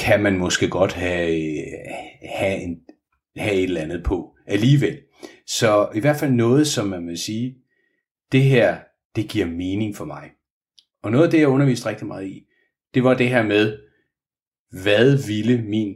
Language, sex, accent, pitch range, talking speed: Danish, male, native, 95-135 Hz, 175 wpm